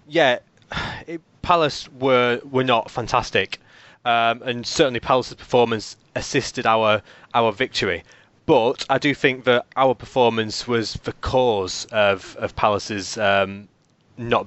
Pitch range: 110-135 Hz